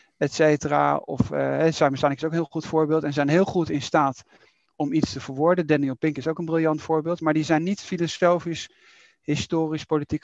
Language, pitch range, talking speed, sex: Dutch, 140-170 Hz, 200 wpm, male